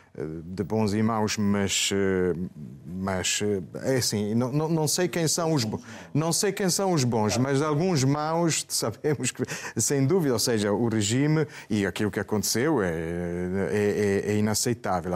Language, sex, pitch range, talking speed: Portuguese, male, 115-150 Hz, 160 wpm